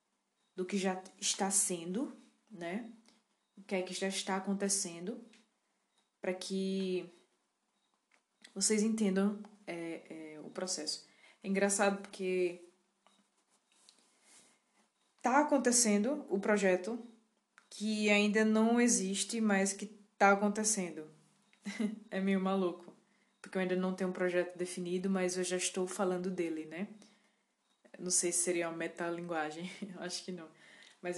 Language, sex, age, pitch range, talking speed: Portuguese, female, 20-39, 180-210 Hz, 125 wpm